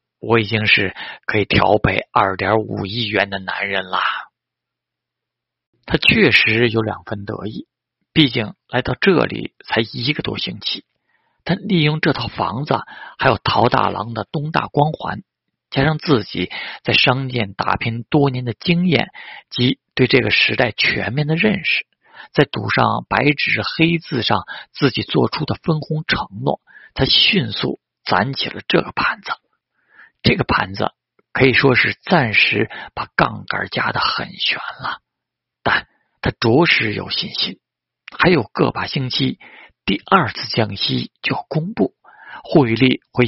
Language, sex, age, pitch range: Chinese, male, 50-69, 110-150 Hz